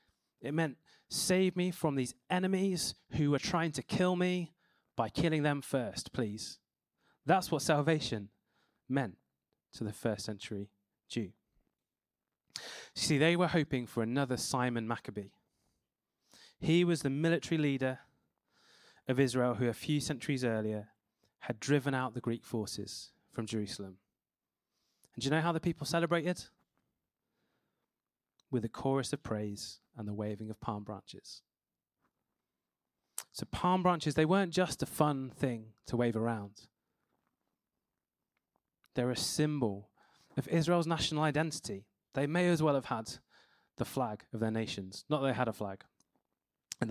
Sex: male